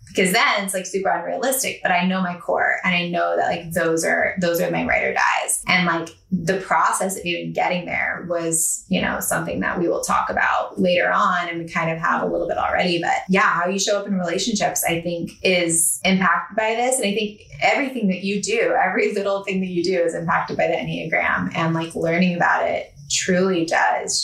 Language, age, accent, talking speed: English, 20-39, American, 225 wpm